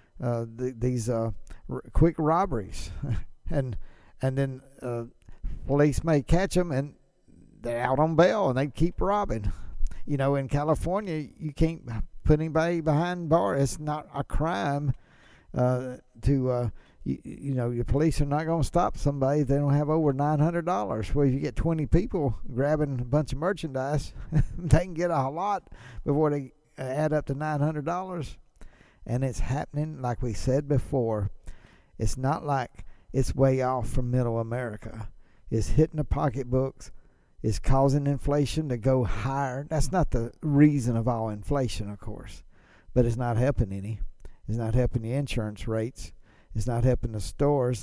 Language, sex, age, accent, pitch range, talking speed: English, male, 60-79, American, 120-150 Hz, 170 wpm